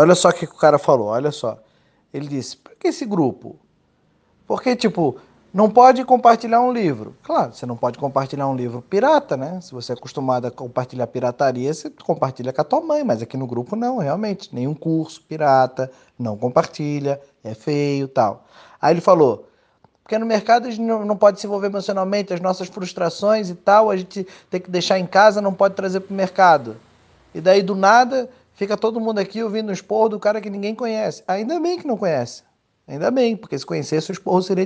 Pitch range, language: 140-200 Hz, Portuguese